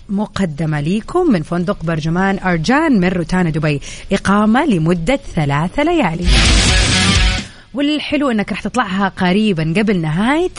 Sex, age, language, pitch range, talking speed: female, 30-49, Arabic, 170-230 Hz, 115 wpm